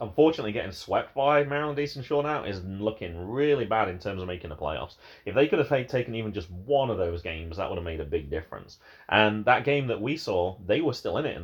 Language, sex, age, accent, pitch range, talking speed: English, male, 30-49, British, 95-140 Hz, 250 wpm